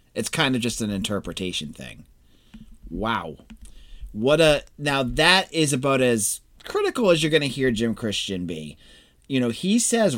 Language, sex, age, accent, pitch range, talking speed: English, male, 30-49, American, 105-155 Hz, 165 wpm